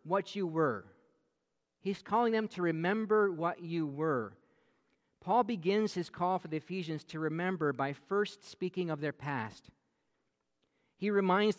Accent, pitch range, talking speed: American, 140-180 Hz, 145 wpm